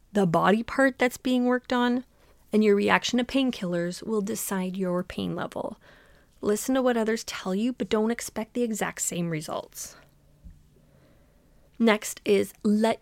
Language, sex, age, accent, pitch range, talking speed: English, female, 30-49, American, 185-235 Hz, 150 wpm